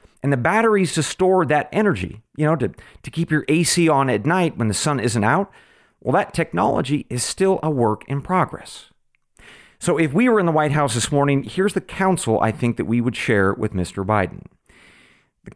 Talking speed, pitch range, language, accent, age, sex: 210 wpm, 120-180 Hz, English, American, 40-59, male